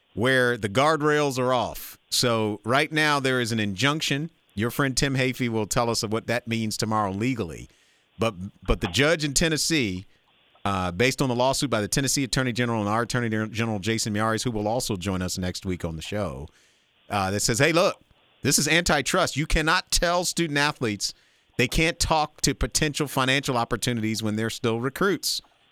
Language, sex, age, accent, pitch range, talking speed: English, male, 40-59, American, 110-155 Hz, 185 wpm